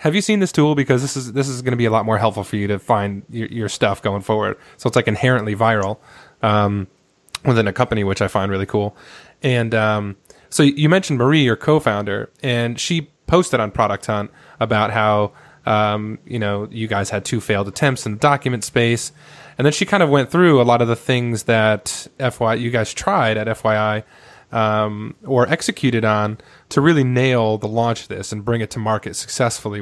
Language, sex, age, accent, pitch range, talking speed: English, male, 20-39, American, 105-130 Hz, 210 wpm